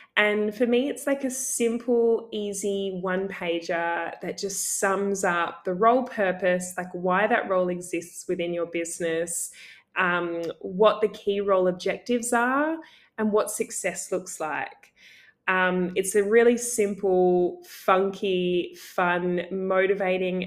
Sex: female